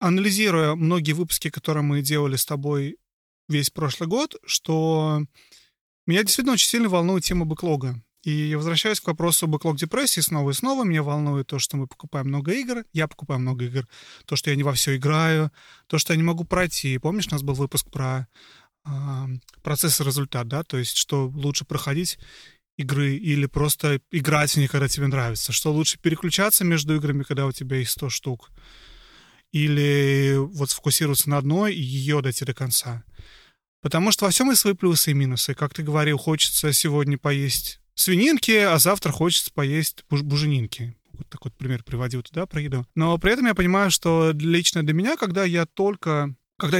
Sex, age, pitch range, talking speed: male, 30-49, 140-170 Hz, 180 wpm